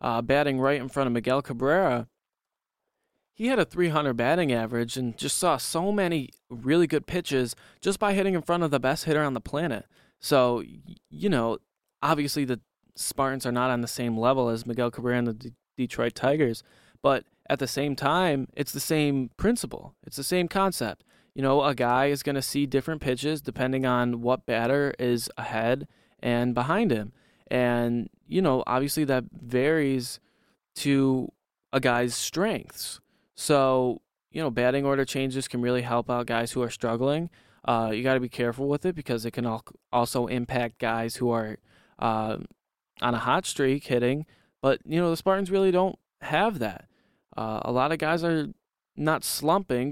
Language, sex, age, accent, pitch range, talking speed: English, male, 20-39, American, 120-150 Hz, 180 wpm